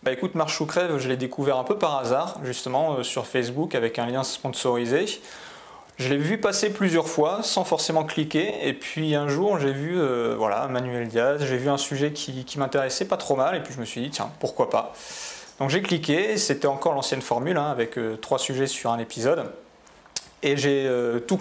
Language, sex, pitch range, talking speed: French, male, 125-150 Hz, 220 wpm